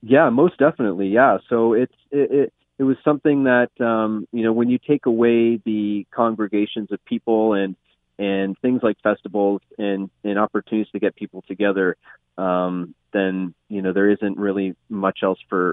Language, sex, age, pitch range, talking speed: English, male, 30-49, 95-110 Hz, 170 wpm